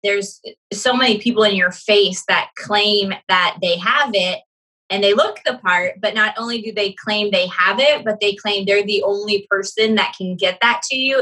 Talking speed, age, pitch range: 215 wpm, 20-39, 190-225 Hz